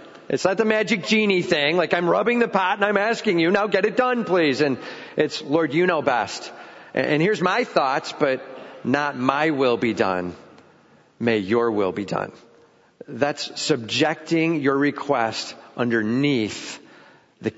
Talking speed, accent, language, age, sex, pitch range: 160 wpm, American, English, 40-59, male, 130-180 Hz